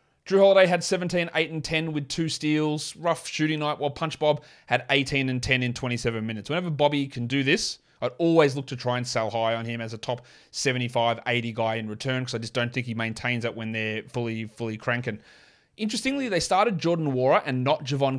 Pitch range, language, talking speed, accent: 120-155 Hz, English, 220 wpm, Australian